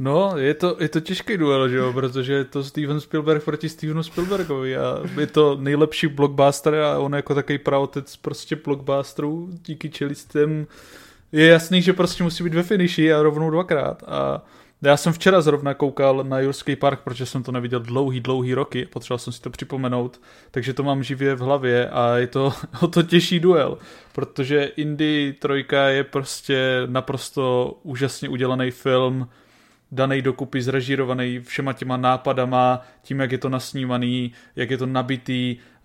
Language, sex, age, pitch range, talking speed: Czech, male, 20-39, 130-145 Hz, 170 wpm